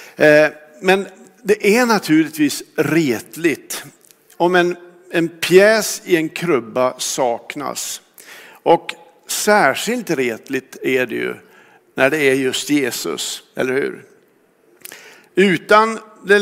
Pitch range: 140-200 Hz